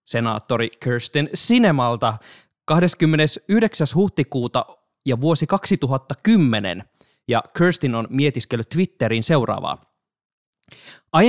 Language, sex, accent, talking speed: Finnish, male, native, 80 wpm